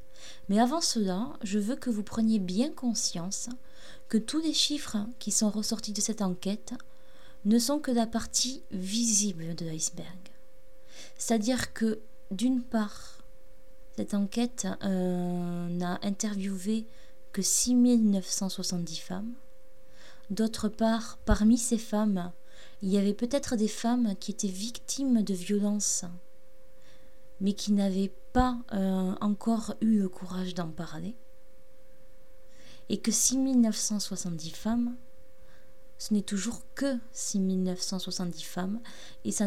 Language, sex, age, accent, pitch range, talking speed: French, female, 20-39, French, 190-250 Hz, 120 wpm